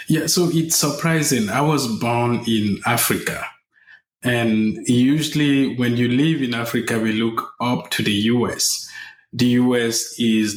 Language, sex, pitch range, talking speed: English, male, 110-120 Hz, 140 wpm